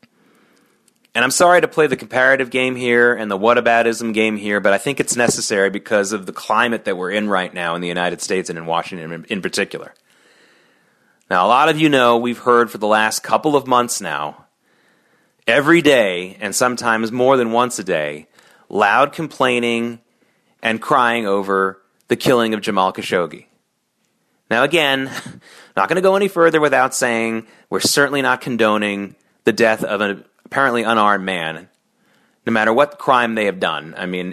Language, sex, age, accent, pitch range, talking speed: English, male, 30-49, American, 100-130 Hz, 175 wpm